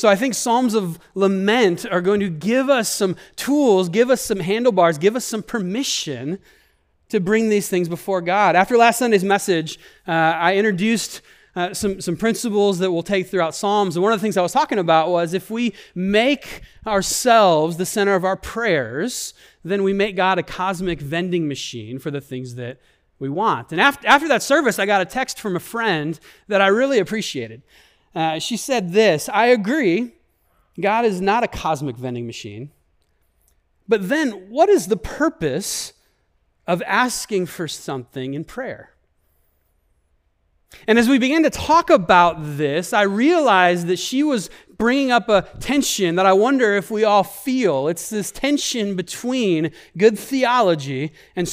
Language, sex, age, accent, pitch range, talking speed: English, male, 30-49, American, 165-230 Hz, 170 wpm